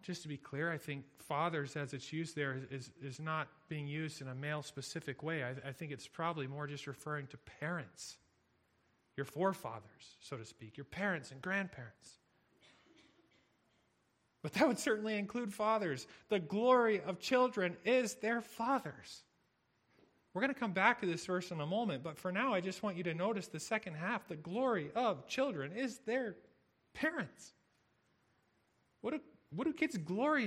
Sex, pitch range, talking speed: male, 140-205 Hz, 175 wpm